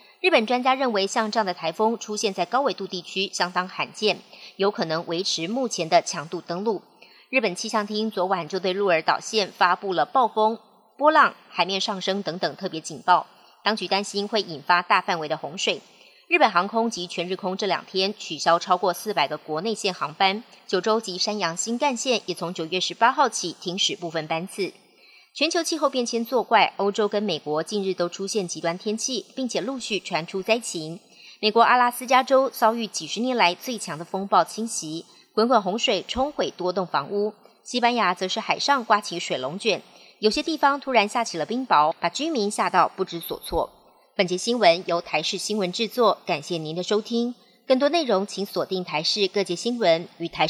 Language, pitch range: Chinese, 175-230 Hz